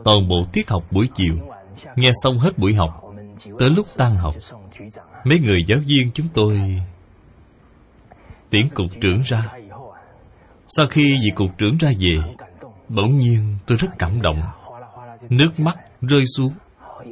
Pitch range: 95-135 Hz